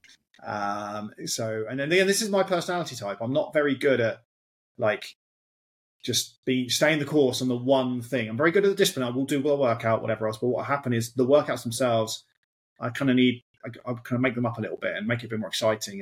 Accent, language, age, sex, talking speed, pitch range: British, English, 30-49, male, 245 wpm, 110-145 Hz